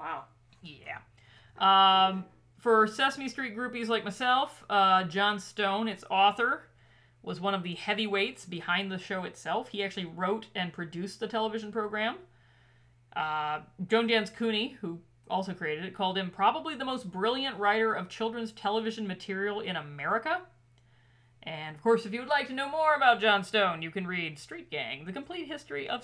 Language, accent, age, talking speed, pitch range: English, American, 40-59, 170 wpm, 165-235 Hz